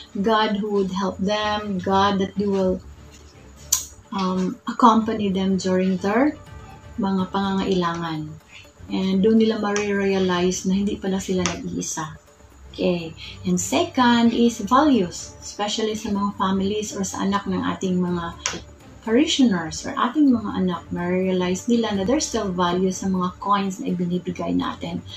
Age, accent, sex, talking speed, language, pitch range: 30-49, native, female, 140 wpm, Filipino, 180-220 Hz